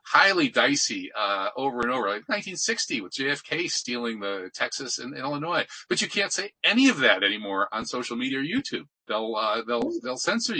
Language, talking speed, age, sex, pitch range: English, 195 wpm, 40-59, male, 110-145 Hz